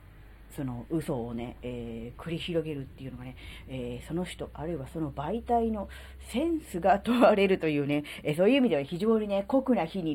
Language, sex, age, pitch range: Japanese, female, 40-59, 135-200 Hz